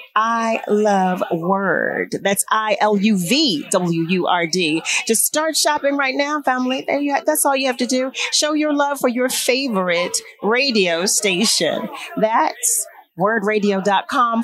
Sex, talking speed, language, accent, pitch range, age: female, 110 wpm, English, American, 185-260 Hz, 40-59